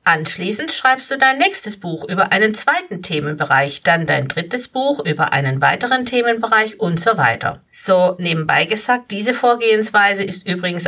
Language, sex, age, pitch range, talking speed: German, female, 50-69, 165-225 Hz, 155 wpm